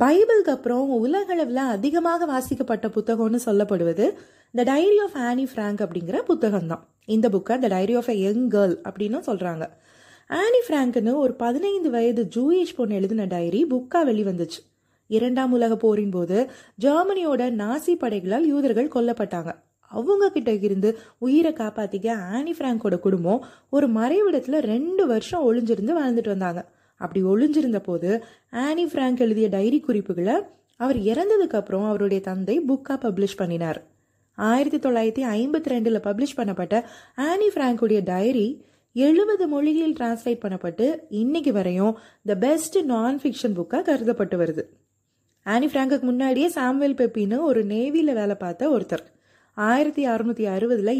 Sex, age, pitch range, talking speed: female, 30-49, 210-285 Hz, 125 wpm